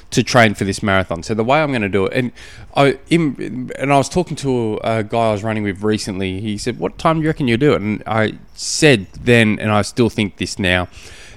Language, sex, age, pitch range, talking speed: English, male, 20-39, 100-130 Hz, 250 wpm